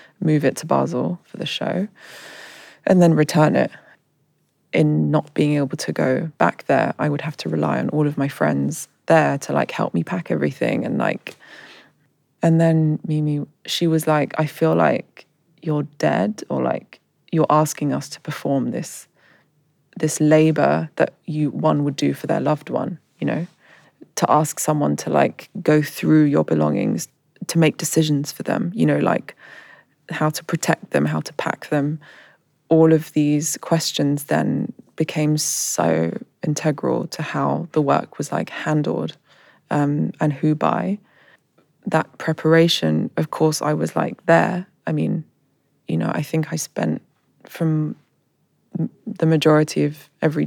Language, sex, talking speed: English, female, 160 wpm